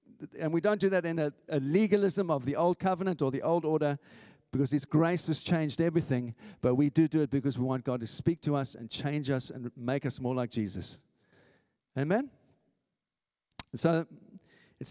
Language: English